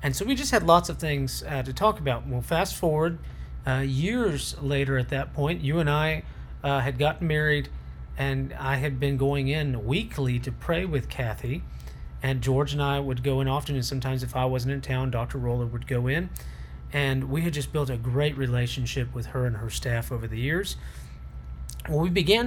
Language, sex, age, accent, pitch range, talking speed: English, male, 40-59, American, 120-145 Hz, 210 wpm